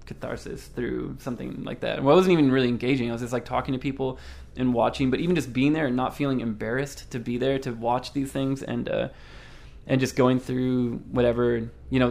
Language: English